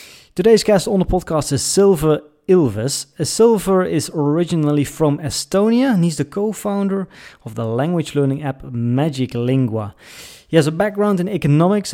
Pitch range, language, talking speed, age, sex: 125-180 Hz, English, 150 wpm, 30-49, male